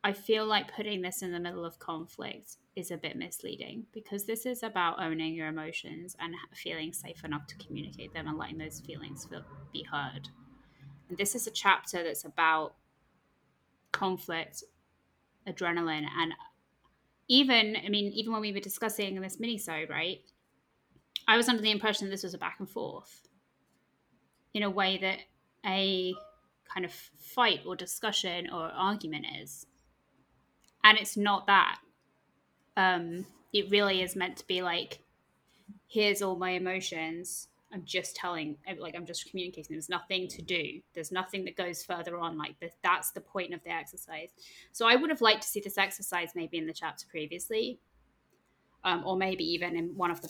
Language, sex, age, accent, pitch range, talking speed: English, female, 10-29, British, 165-200 Hz, 170 wpm